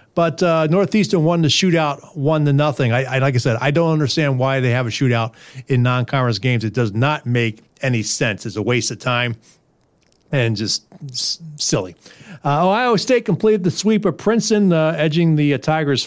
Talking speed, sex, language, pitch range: 195 wpm, male, English, 130-165 Hz